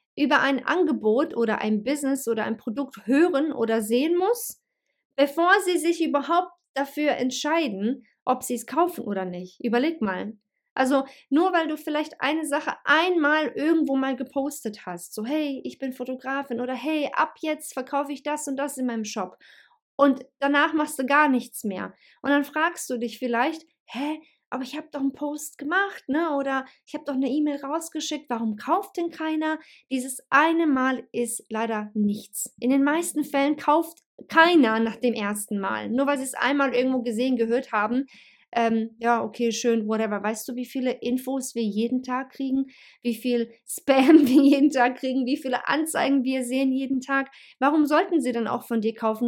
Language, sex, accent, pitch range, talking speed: German, female, German, 230-295 Hz, 185 wpm